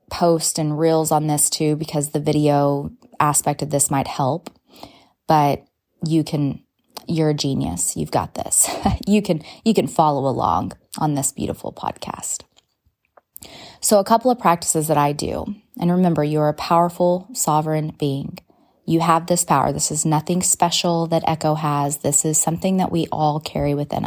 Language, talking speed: English, 165 wpm